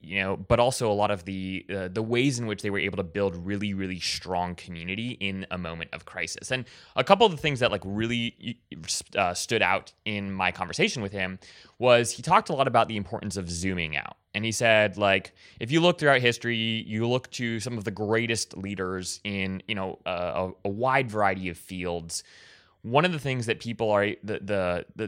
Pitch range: 95-120 Hz